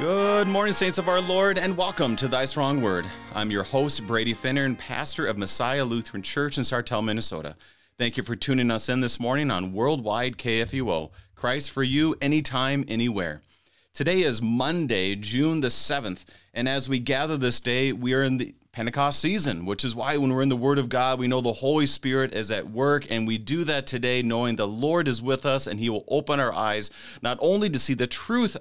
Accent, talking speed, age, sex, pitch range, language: American, 210 wpm, 30-49, male, 105-135 Hz, English